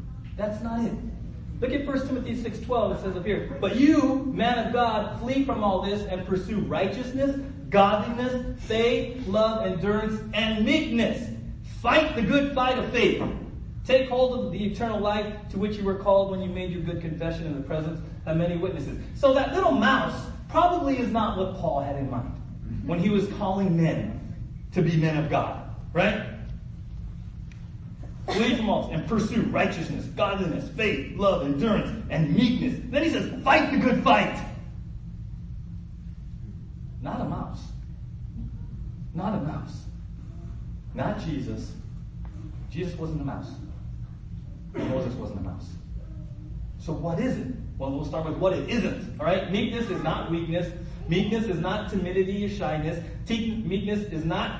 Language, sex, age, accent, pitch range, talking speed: English, male, 40-59, American, 165-230 Hz, 155 wpm